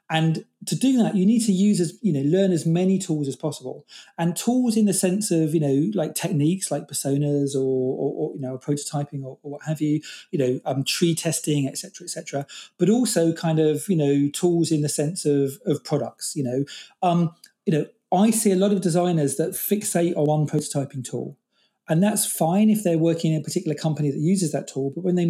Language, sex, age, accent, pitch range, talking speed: English, male, 40-59, British, 140-180 Hz, 230 wpm